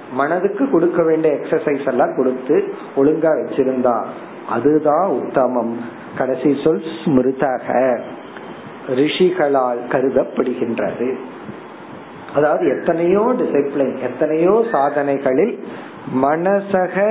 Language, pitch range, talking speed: Tamil, 135-175 Hz, 35 wpm